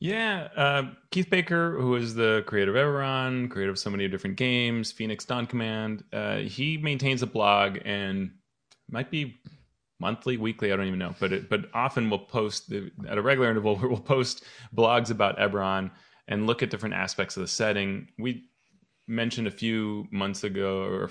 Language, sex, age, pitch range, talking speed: English, male, 30-49, 100-125 Hz, 185 wpm